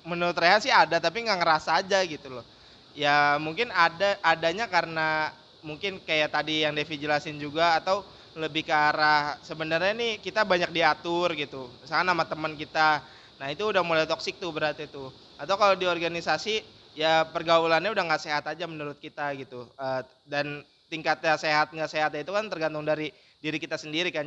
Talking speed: 175 wpm